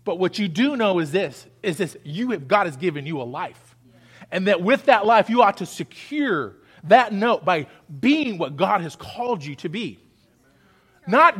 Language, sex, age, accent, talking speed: English, male, 30-49, American, 200 wpm